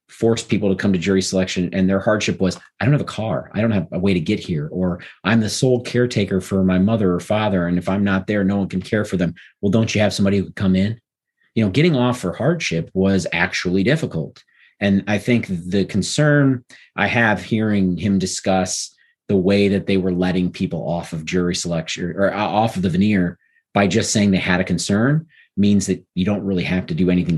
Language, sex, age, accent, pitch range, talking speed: English, male, 40-59, American, 90-105 Hz, 230 wpm